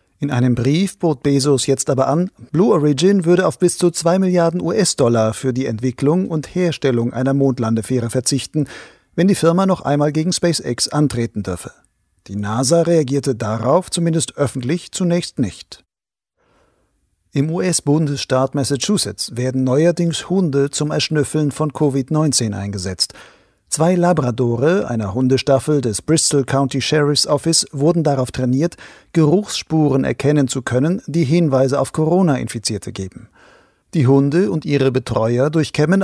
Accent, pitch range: German, 130-165 Hz